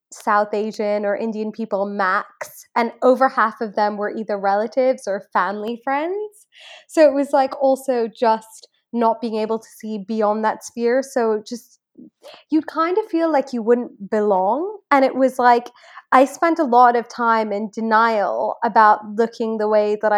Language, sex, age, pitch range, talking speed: English, female, 20-39, 205-245 Hz, 170 wpm